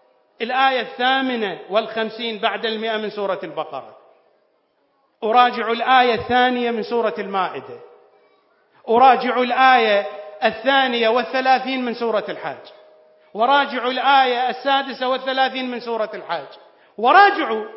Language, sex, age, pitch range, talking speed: English, male, 40-59, 190-255 Hz, 100 wpm